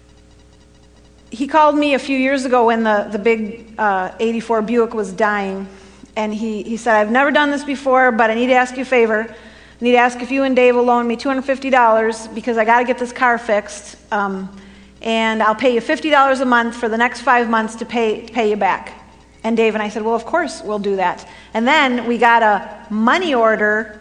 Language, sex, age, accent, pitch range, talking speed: English, female, 40-59, American, 215-255 Hz, 225 wpm